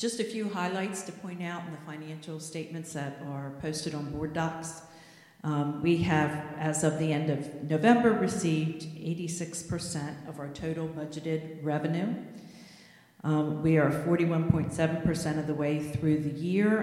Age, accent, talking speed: 50-69, American, 155 wpm